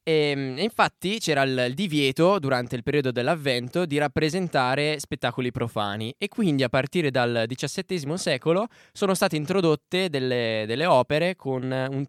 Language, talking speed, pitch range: Italian, 140 wpm, 115-150 Hz